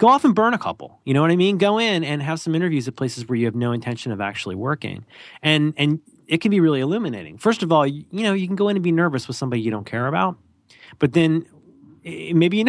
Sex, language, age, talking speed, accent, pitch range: male, English, 30-49, 265 wpm, American, 120-170 Hz